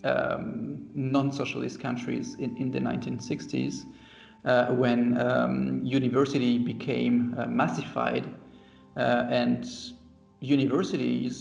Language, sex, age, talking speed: English, male, 40-59, 90 wpm